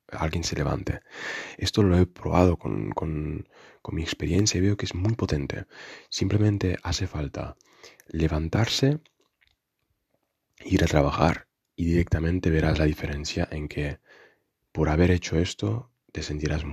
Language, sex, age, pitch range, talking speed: Spanish, male, 20-39, 75-100 Hz, 135 wpm